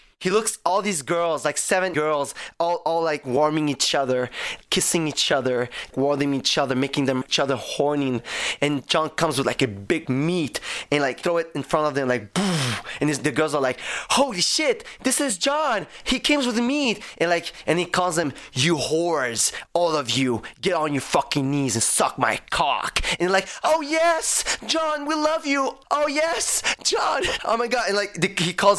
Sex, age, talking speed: male, 20-39, 200 wpm